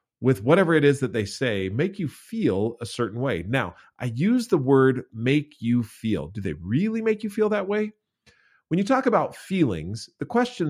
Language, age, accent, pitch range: English, 40-59, American, 110-160 Hz